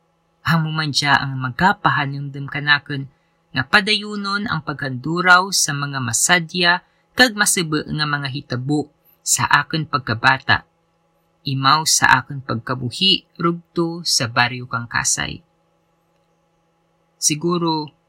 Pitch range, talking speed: 140-170 Hz, 95 wpm